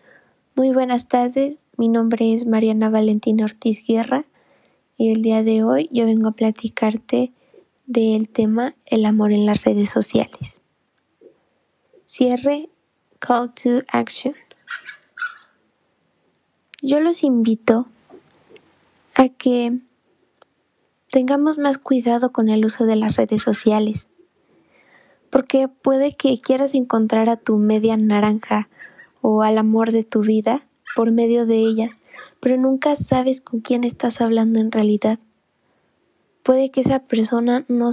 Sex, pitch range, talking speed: female, 225-265 Hz, 125 wpm